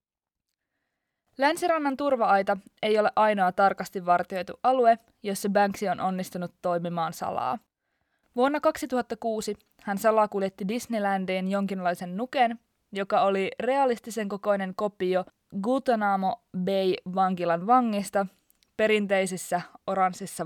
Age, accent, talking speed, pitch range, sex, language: 20-39, native, 95 wpm, 185-230 Hz, female, Finnish